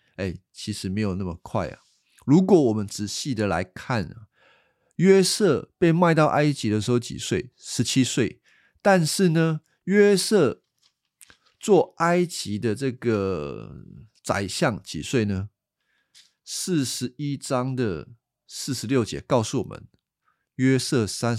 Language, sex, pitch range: Chinese, male, 100-135 Hz